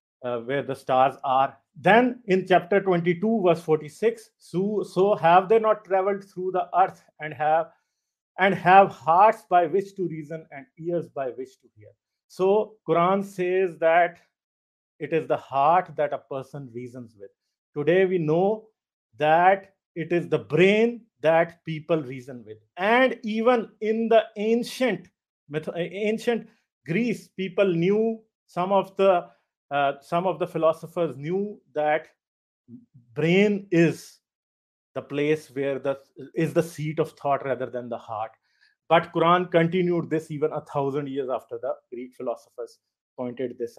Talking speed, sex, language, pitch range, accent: 150 wpm, male, English, 145-195 Hz, Indian